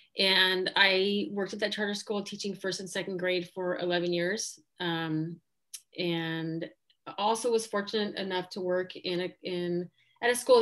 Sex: female